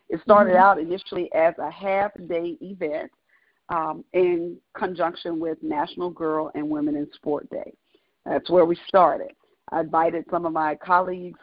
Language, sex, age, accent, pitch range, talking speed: English, female, 40-59, American, 165-210 Hz, 150 wpm